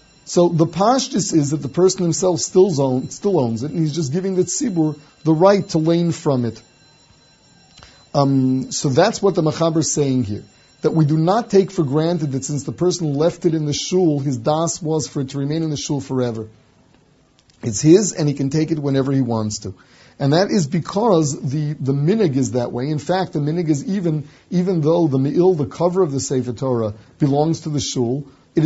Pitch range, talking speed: 135-170 Hz, 210 wpm